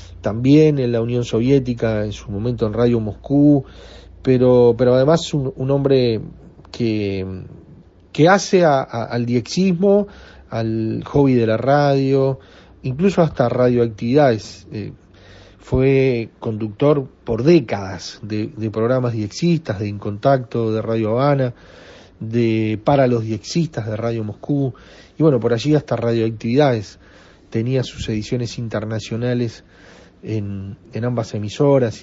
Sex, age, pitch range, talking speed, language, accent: male, 40-59, 110-140 Hz, 125 wpm, Spanish, Argentinian